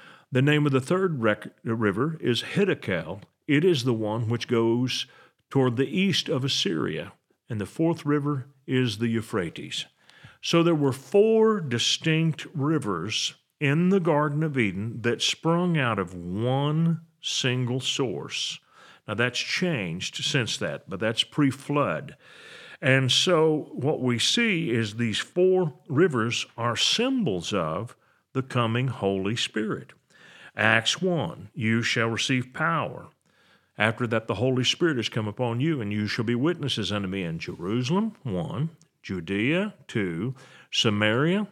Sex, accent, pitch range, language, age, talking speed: male, American, 115-165 Hz, English, 40-59, 140 wpm